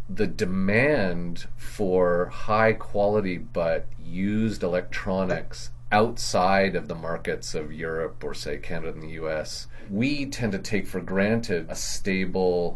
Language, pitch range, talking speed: English, 85-110 Hz, 130 wpm